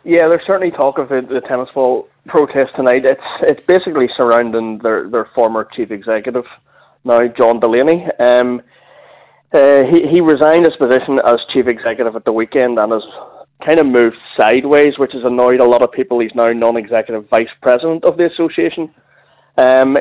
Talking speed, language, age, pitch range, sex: 170 wpm, English, 20-39, 120-145 Hz, male